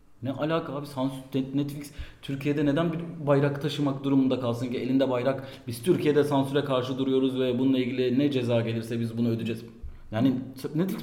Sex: male